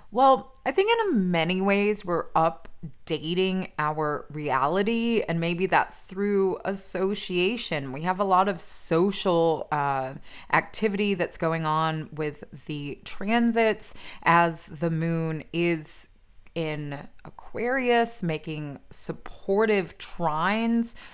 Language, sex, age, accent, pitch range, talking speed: English, female, 20-39, American, 155-190 Hz, 110 wpm